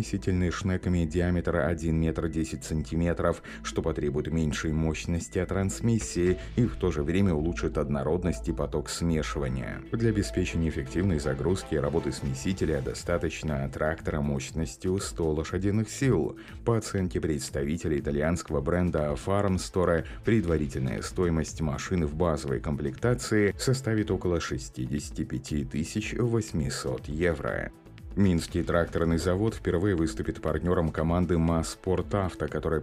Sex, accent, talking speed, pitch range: male, native, 110 wpm, 80-95 Hz